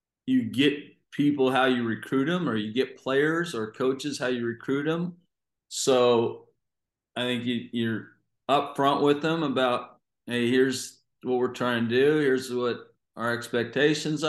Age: 40-59